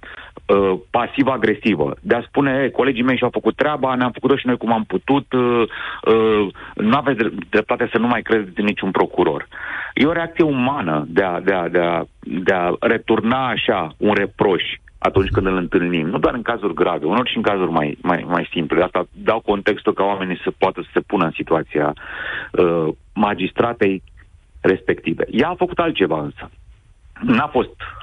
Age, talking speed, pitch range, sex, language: 40-59, 185 wpm, 95-130 Hz, male, Romanian